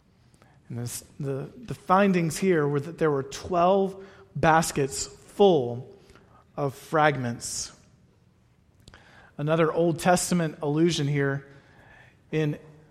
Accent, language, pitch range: American, English, 135-185 Hz